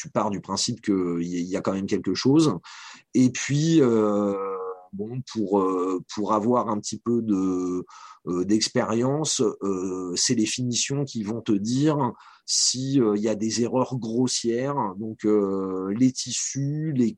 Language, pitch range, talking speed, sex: French, 105-130 Hz, 160 wpm, male